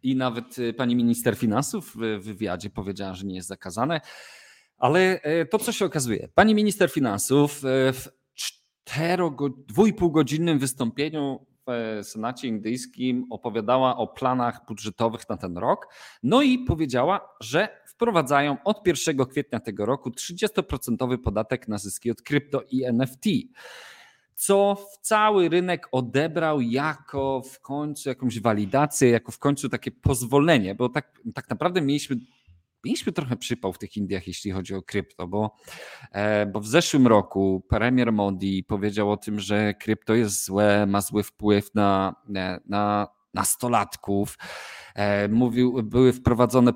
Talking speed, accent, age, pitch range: 135 wpm, native, 40-59, 105-145 Hz